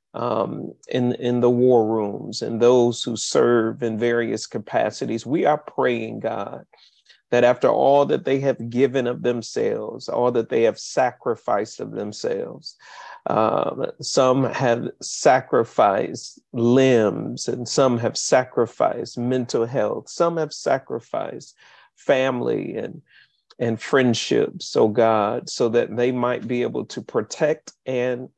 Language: English